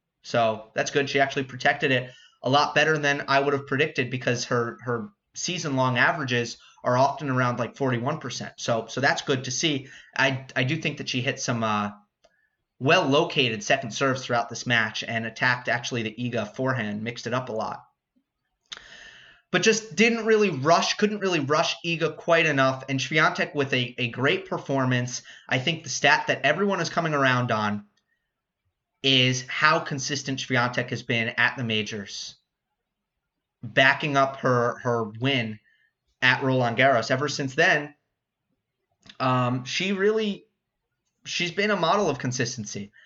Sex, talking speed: male, 160 wpm